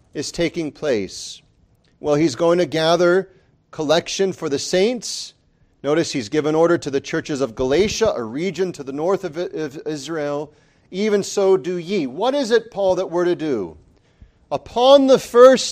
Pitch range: 145-195 Hz